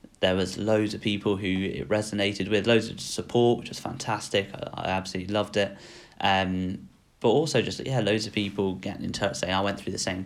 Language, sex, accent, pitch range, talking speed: English, male, British, 95-110 Hz, 215 wpm